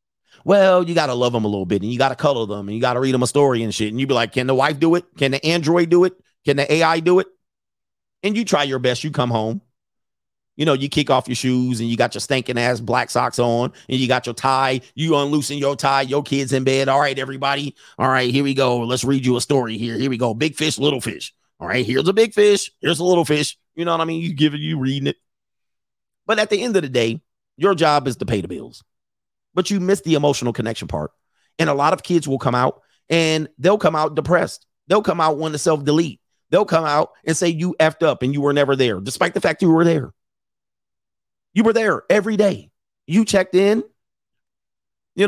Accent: American